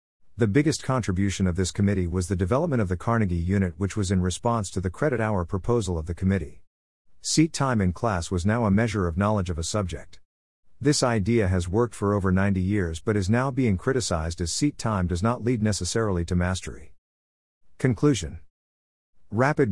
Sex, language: male, English